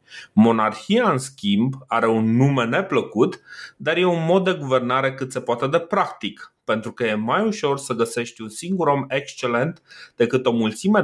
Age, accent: 30-49, native